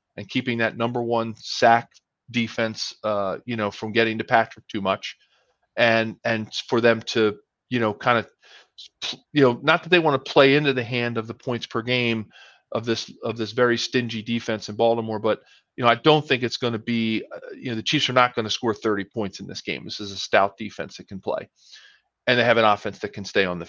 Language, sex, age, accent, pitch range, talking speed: English, male, 40-59, American, 110-130 Hz, 235 wpm